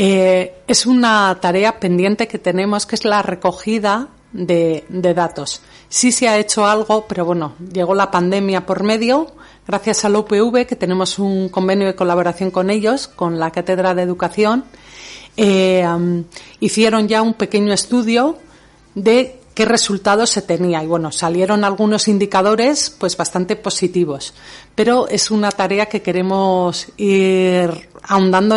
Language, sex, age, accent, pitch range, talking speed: Spanish, female, 40-59, Spanish, 180-225 Hz, 150 wpm